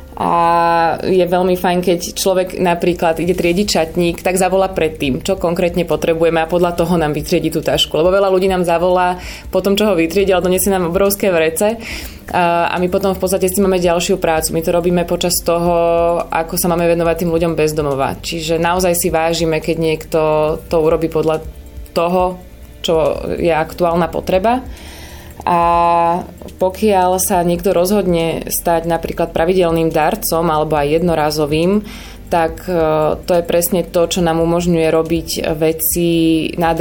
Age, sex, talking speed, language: 20-39, female, 160 wpm, Slovak